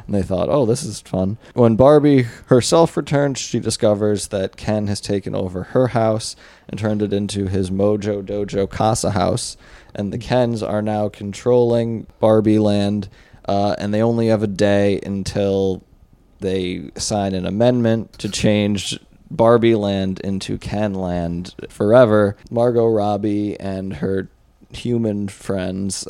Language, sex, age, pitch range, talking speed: English, male, 20-39, 95-115 Hz, 145 wpm